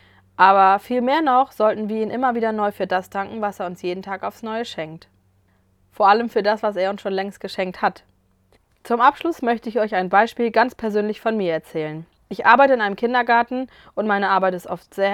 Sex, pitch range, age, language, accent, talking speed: female, 180-225 Hz, 20-39, German, German, 215 wpm